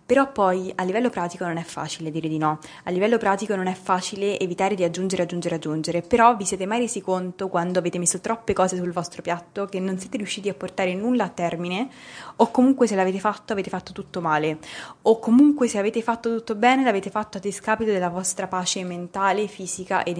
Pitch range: 170-200 Hz